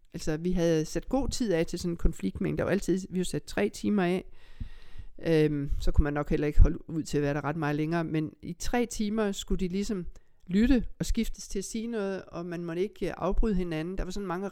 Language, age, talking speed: Danish, 60-79, 245 wpm